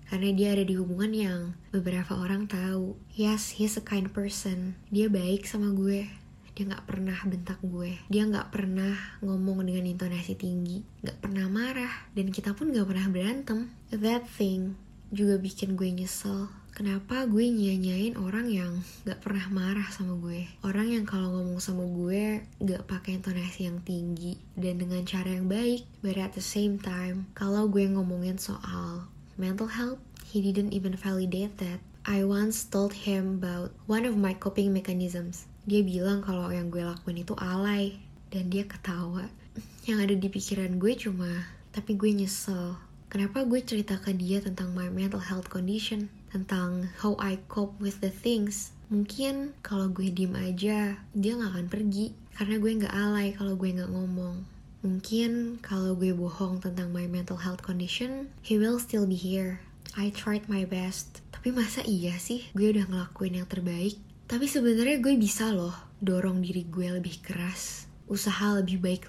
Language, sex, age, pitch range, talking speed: Indonesian, female, 10-29, 185-210 Hz, 165 wpm